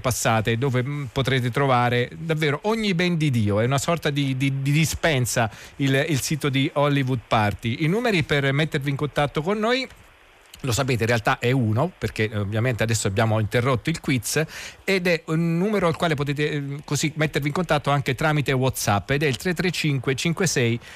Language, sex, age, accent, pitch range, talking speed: Italian, male, 40-59, native, 120-150 Hz, 180 wpm